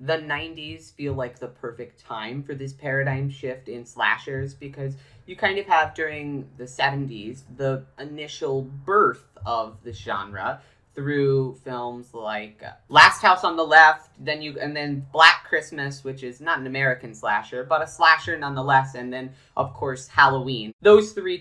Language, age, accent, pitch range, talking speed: English, 30-49, American, 125-160 Hz, 165 wpm